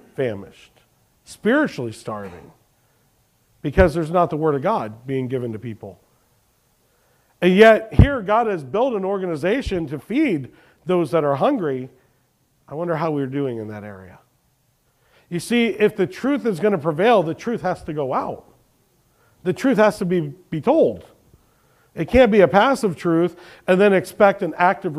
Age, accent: 40-59, American